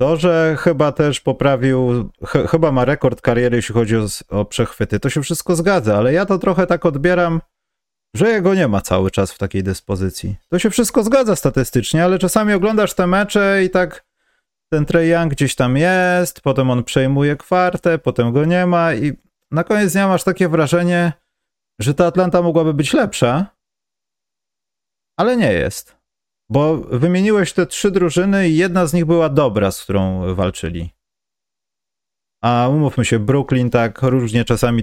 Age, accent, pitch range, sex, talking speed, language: 30-49, native, 110-175 Hz, male, 165 wpm, Polish